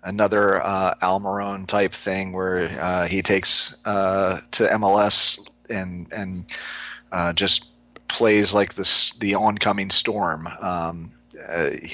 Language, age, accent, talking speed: English, 40-59, American, 120 wpm